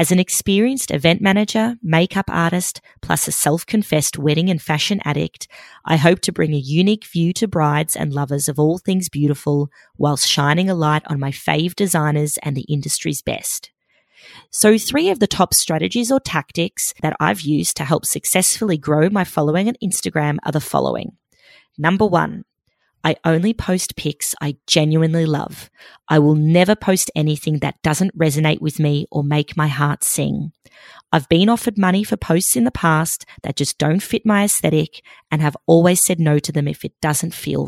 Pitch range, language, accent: 150-185 Hz, English, Australian